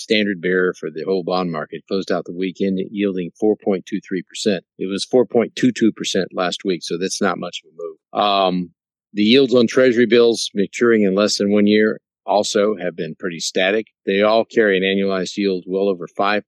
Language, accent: English, American